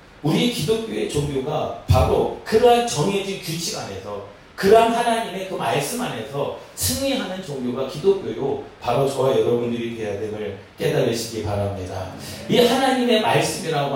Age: 40-59